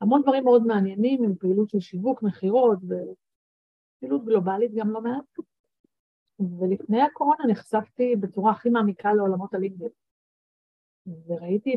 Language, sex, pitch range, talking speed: Hebrew, female, 180-225 Hz, 115 wpm